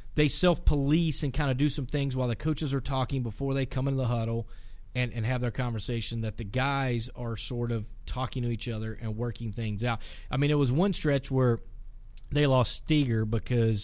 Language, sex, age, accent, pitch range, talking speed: English, male, 30-49, American, 115-145 Hz, 215 wpm